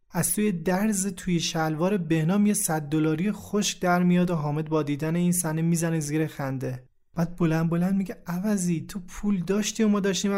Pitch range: 150-185 Hz